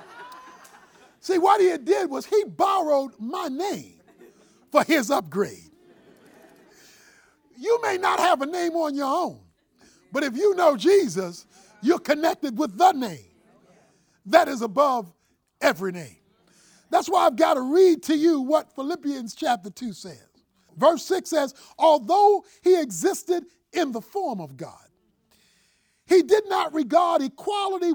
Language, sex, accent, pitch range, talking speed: English, male, American, 265-360 Hz, 140 wpm